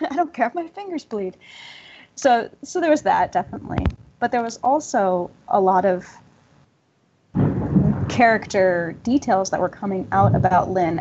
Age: 10-29